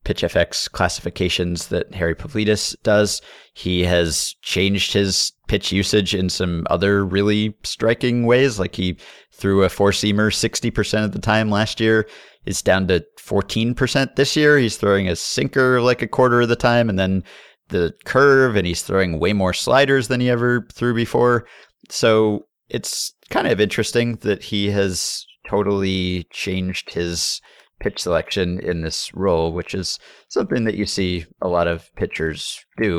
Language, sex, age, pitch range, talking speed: English, male, 30-49, 90-115 Hz, 160 wpm